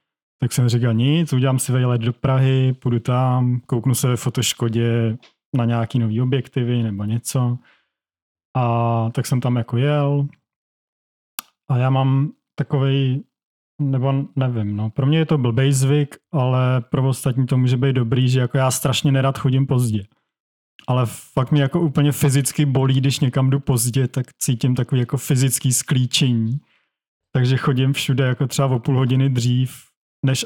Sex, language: male, Czech